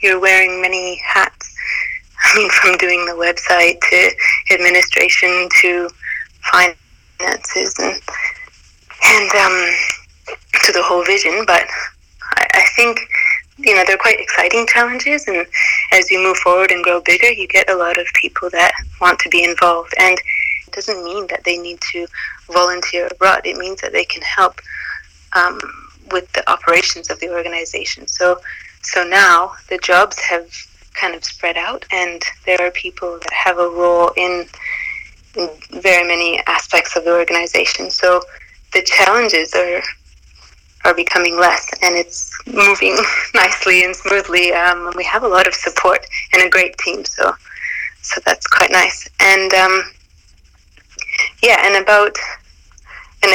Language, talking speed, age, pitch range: English, 150 wpm, 20-39, 175-200 Hz